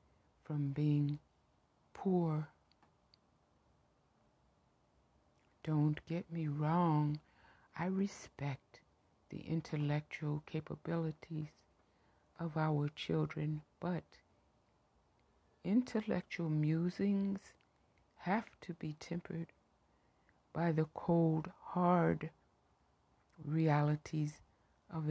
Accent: American